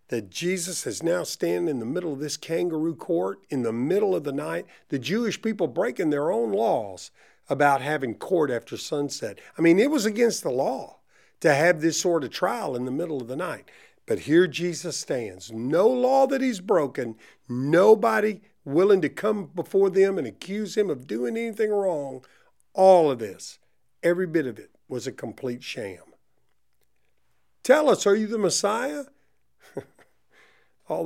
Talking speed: 170 wpm